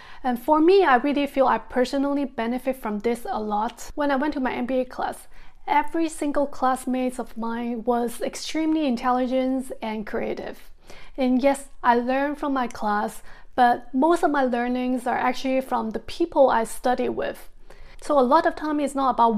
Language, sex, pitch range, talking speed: English, female, 235-290 Hz, 180 wpm